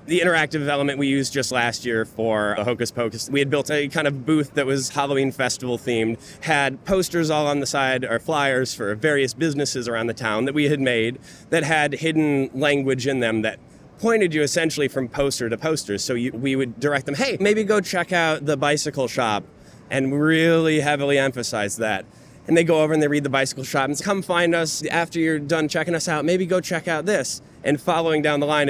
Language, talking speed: English, 220 wpm